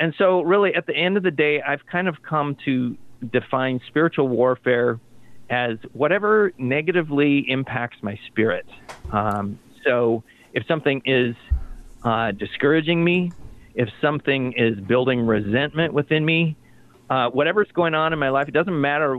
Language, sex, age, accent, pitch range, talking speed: English, male, 40-59, American, 120-150 Hz, 150 wpm